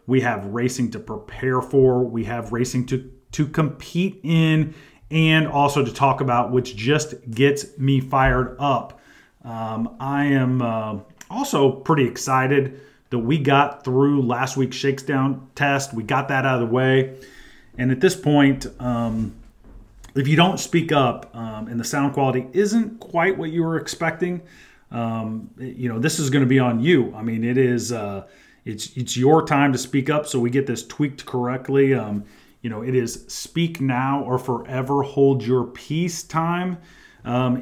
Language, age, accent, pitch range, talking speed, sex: English, 30-49, American, 125-145 Hz, 175 wpm, male